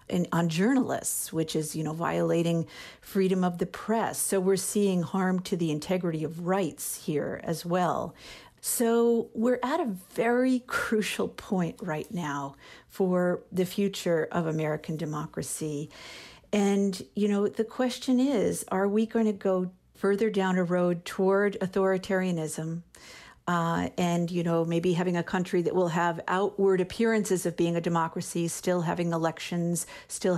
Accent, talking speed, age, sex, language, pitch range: American, 150 wpm, 50-69, female, English, 165-195 Hz